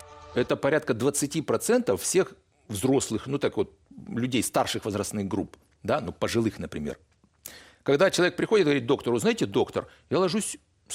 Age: 60-79